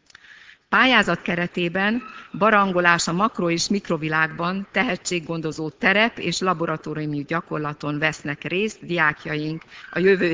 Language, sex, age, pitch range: Hungarian, female, 50-69, 155-195 Hz